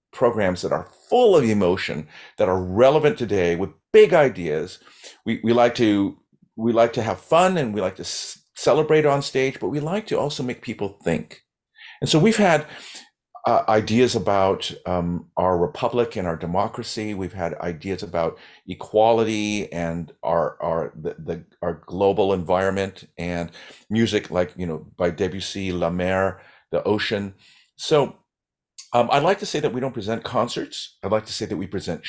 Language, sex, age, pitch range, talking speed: English, male, 50-69, 95-120 Hz, 175 wpm